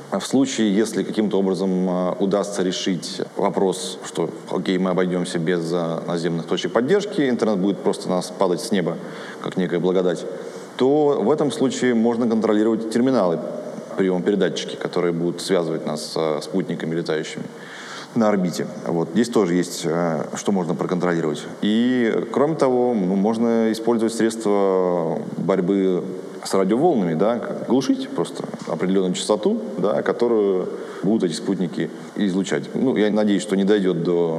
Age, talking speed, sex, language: 20-39, 135 wpm, male, Russian